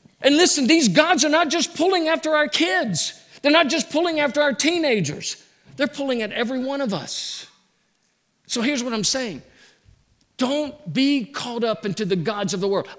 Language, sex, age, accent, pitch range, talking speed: English, male, 50-69, American, 170-255 Hz, 185 wpm